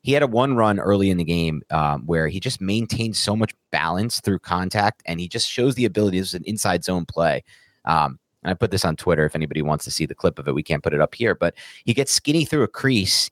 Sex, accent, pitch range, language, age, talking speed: male, American, 85-105 Hz, English, 30-49, 265 wpm